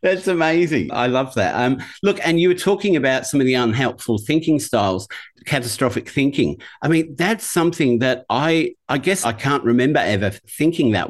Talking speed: 185 wpm